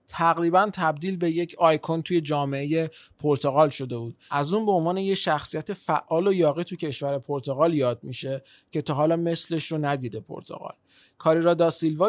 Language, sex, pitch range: Persian, male, 140-170 Hz